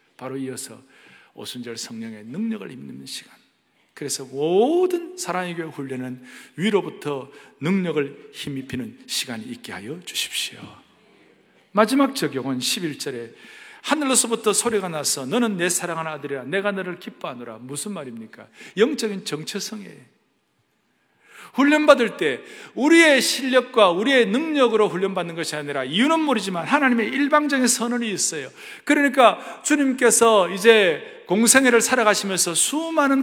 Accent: native